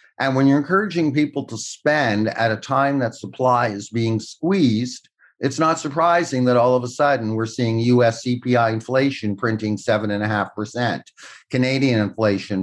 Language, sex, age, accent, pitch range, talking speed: English, male, 50-69, American, 105-135 Hz, 150 wpm